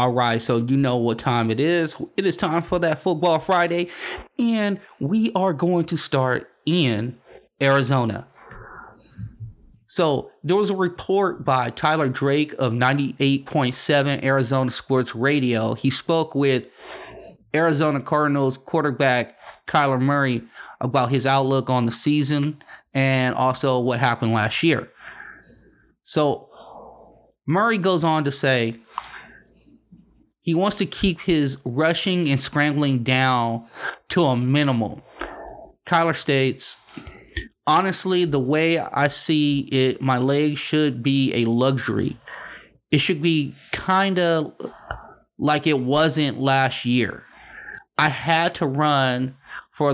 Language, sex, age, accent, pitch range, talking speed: English, male, 30-49, American, 130-160 Hz, 125 wpm